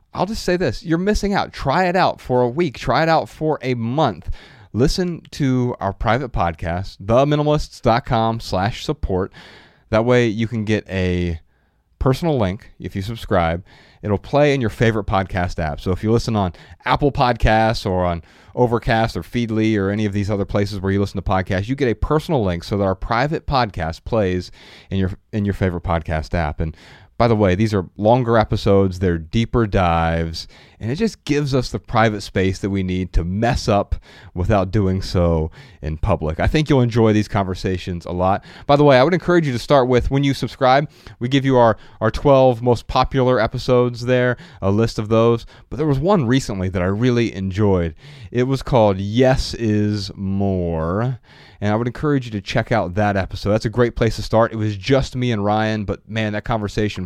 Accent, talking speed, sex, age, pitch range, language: American, 200 wpm, male, 30-49, 95-125 Hz, English